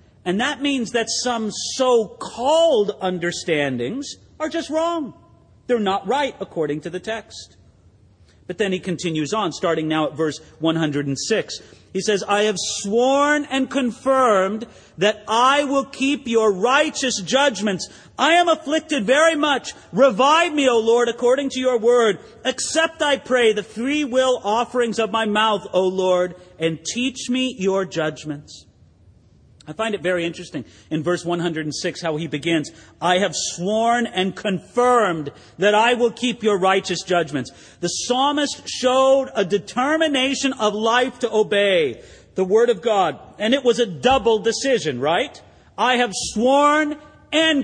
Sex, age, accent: male, 40-59, American